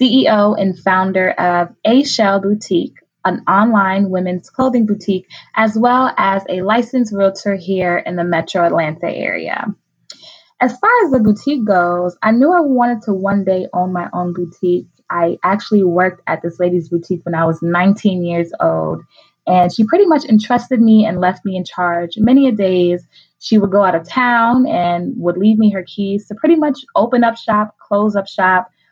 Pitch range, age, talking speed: 175-215 Hz, 20-39, 185 wpm